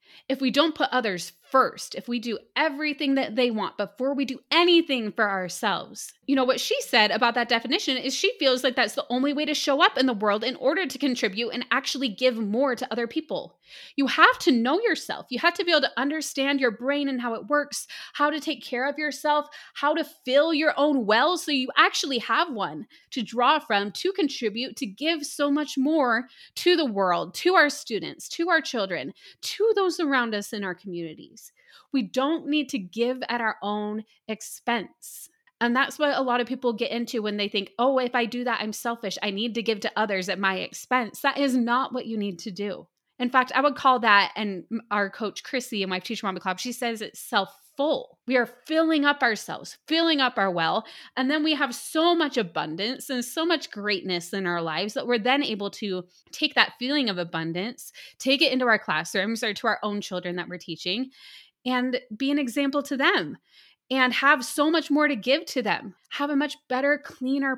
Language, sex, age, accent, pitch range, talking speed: English, female, 20-39, American, 220-290 Hz, 215 wpm